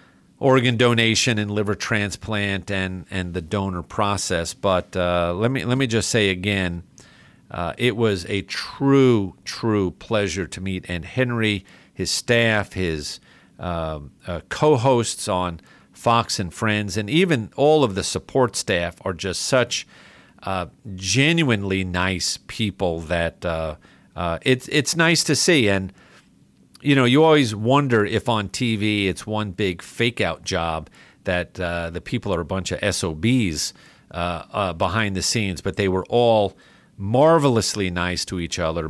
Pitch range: 90-115 Hz